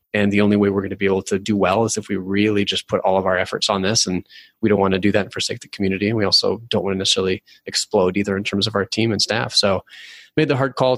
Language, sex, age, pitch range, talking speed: English, male, 20-39, 100-130 Hz, 305 wpm